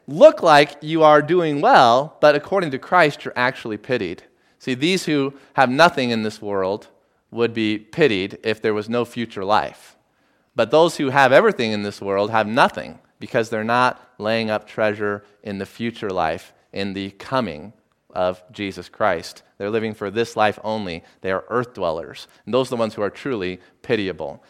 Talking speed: 185 wpm